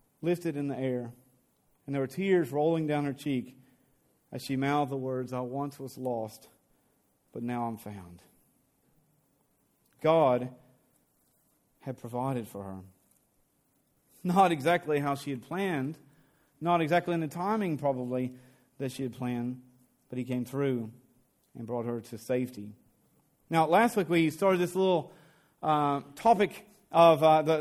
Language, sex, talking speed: English, male, 145 wpm